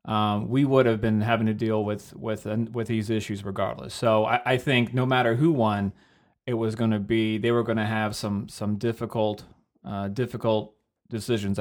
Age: 30-49